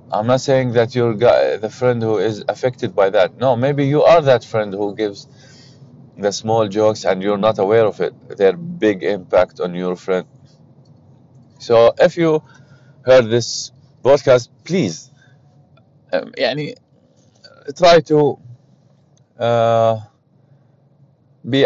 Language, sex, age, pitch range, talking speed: Arabic, male, 30-49, 110-140 Hz, 135 wpm